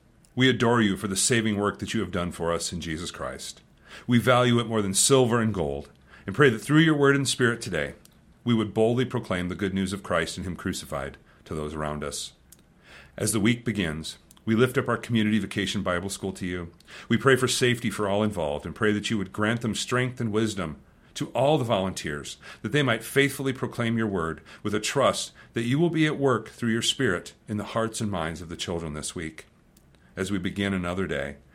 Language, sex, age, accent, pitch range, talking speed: English, male, 40-59, American, 90-120 Hz, 225 wpm